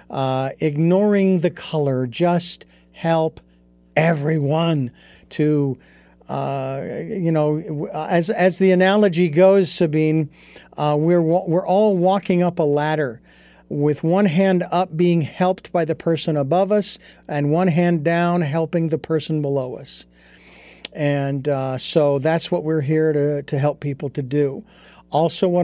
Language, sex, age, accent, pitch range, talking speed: English, male, 50-69, American, 150-185 Hz, 140 wpm